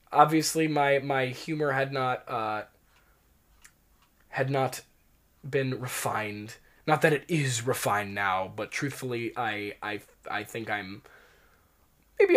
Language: English